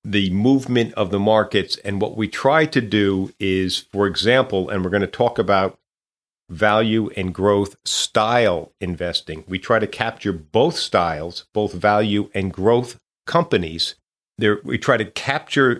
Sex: male